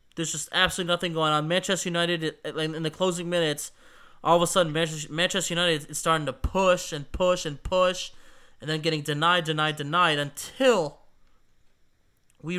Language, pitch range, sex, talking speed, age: English, 155-210 Hz, male, 160 wpm, 20-39